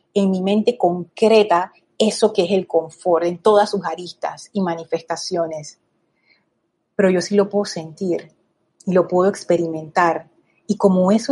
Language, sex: Spanish, female